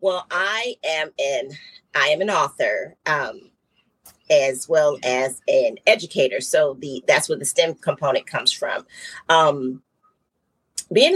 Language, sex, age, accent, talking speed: English, female, 40-59, American, 135 wpm